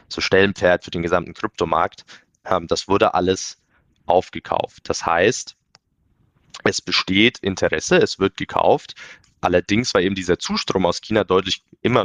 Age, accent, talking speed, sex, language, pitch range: 20-39, German, 135 wpm, male, German, 85-95 Hz